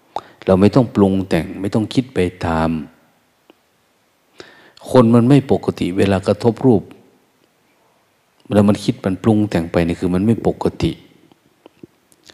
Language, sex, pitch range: Thai, male, 90-110 Hz